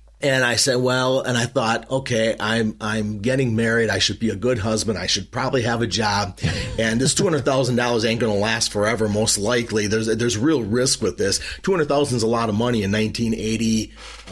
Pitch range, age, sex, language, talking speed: 105-130 Hz, 40-59, male, English, 220 wpm